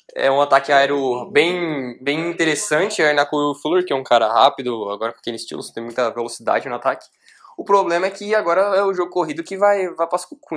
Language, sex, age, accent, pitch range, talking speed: Portuguese, male, 10-29, Brazilian, 135-170 Hz, 220 wpm